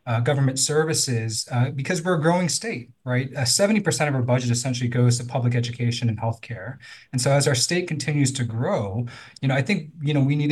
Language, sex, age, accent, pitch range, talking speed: English, male, 20-39, American, 120-145 Hz, 230 wpm